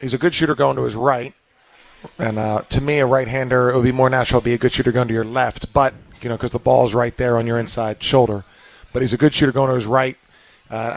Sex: male